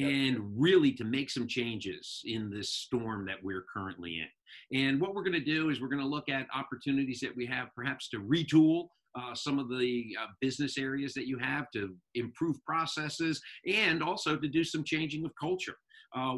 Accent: American